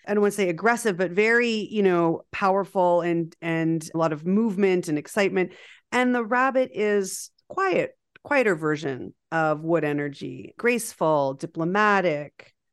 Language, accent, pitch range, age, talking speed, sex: English, American, 165-215 Hz, 40-59, 145 wpm, female